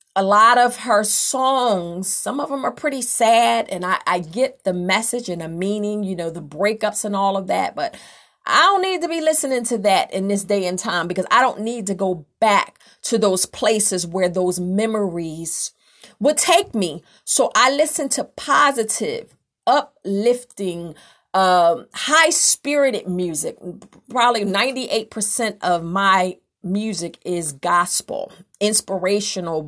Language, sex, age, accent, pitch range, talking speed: English, female, 40-59, American, 190-245 Hz, 155 wpm